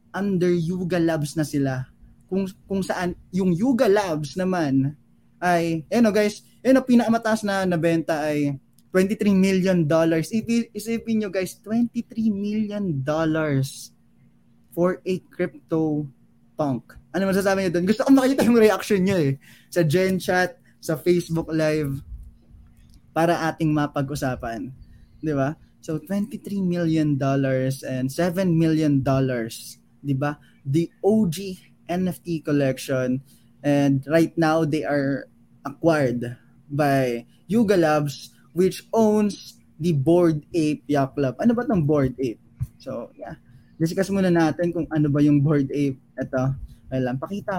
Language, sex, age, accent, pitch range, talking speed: English, male, 20-39, Filipino, 140-190 Hz, 135 wpm